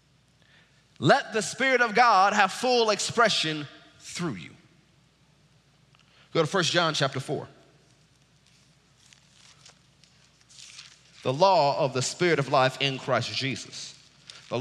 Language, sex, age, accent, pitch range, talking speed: English, male, 30-49, American, 140-190 Hz, 110 wpm